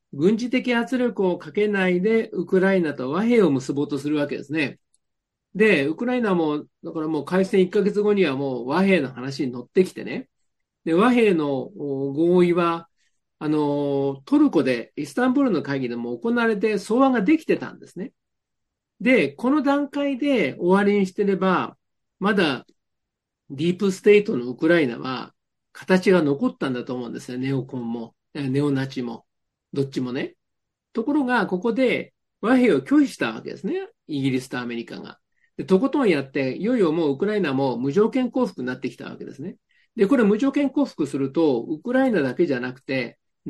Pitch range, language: 140-225 Hz, Japanese